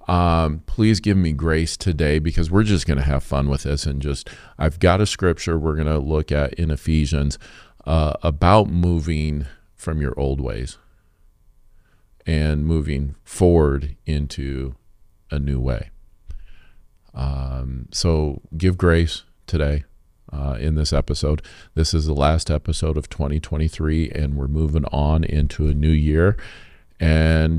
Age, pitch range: 40-59, 70-85 Hz